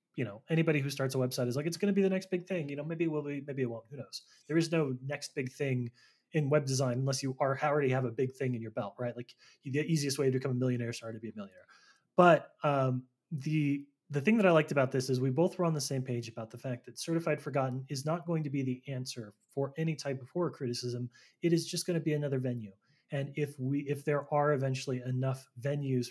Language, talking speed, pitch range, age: English, 265 wpm, 125-150 Hz, 20-39